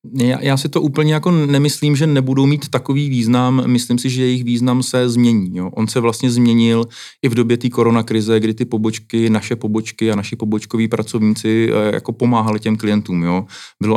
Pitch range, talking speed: 105-115 Hz, 190 wpm